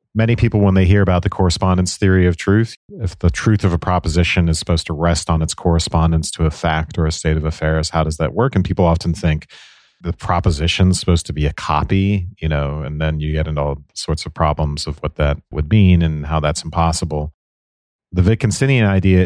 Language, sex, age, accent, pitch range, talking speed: English, male, 40-59, American, 80-95 Hz, 220 wpm